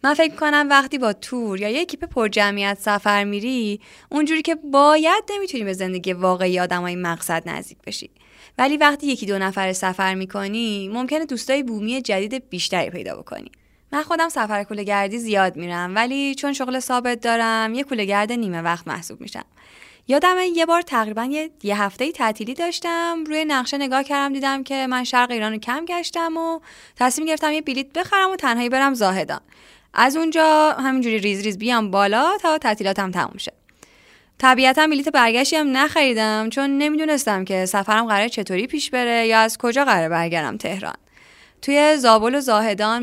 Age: 20-39